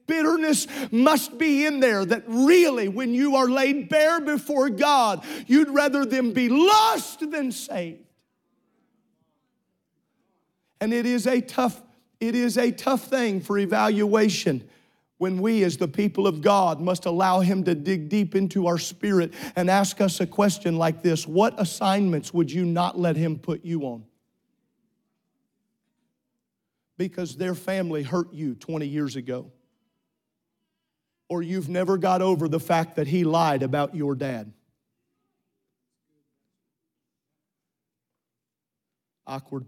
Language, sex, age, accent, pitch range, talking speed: English, male, 40-59, American, 180-295 Hz, 135 wpm